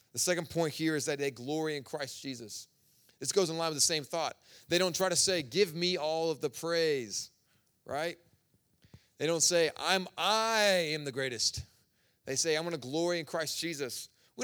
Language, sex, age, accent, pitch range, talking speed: English, male, 30-49, American, 135-180 Hz, 205 wpm